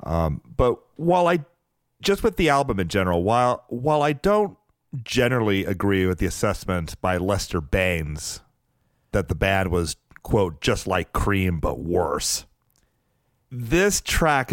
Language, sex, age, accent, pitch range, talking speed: English, male, 40-59, American, 90-120 Hz, 140 wpm